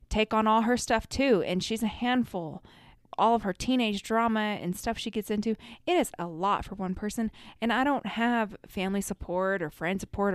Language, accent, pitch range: English, American, 170-225 Hz